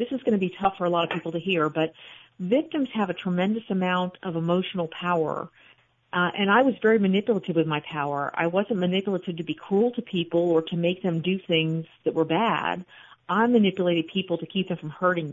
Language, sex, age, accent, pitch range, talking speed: English, female, 40-59, American, 165-195 Hz, 220 wpm